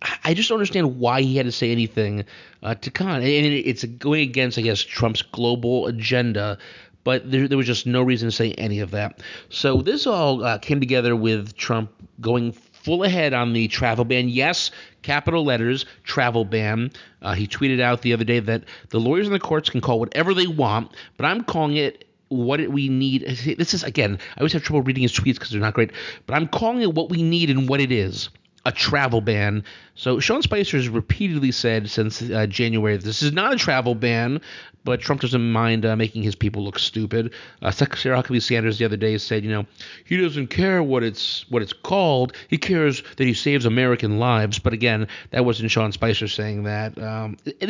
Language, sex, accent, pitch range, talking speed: English, male, American, 115-145 Hz, 210 wpm